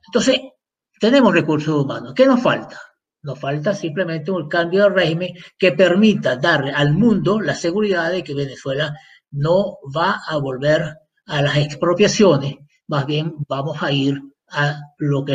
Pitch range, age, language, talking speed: 145-185 Hz, 50-69, Spanish, 155 wpm